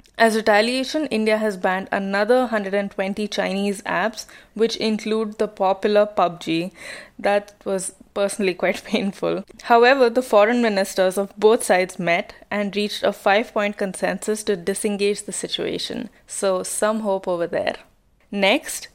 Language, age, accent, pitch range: English, 20-39, Indian, 190-225 Hz